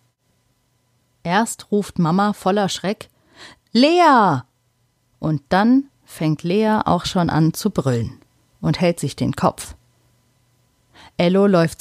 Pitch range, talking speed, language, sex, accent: 135-210 Hz, 110 wpm, German, female, German